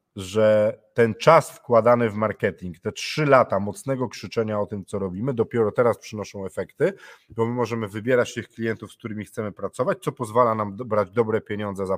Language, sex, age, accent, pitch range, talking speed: Polish, male, 40-59, native, 100-120 Hz, 180 wpm